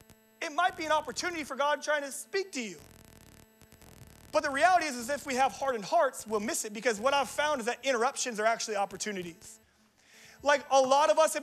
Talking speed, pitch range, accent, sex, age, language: 215 wpm, 245-305 Hz, American, male, 30-49, English